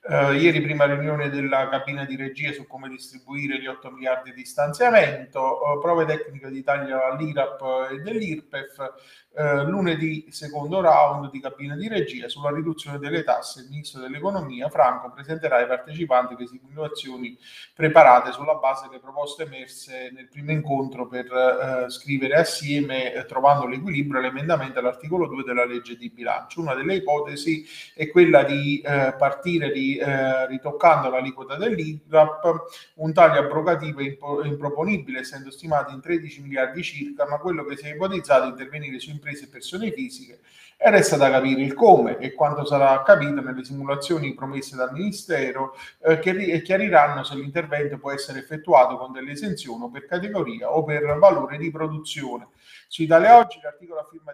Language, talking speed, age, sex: Italian, 160 wpm, 30-49, male